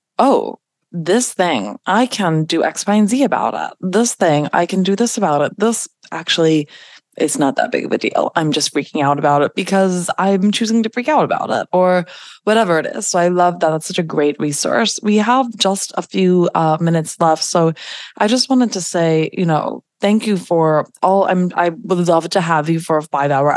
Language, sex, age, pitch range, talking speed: English, female, 20-39, 155-185 Hz, 215 wpm